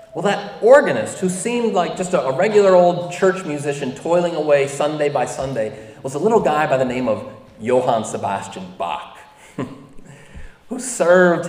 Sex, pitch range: male, 125-175 Hz